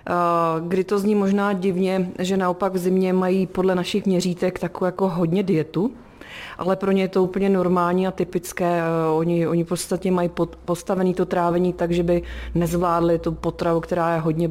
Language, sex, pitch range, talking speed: Czech, female, 165-185 Hz, 170 wpm